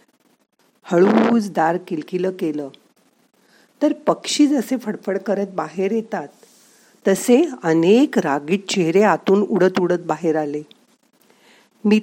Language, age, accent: Marathi, 50-69, native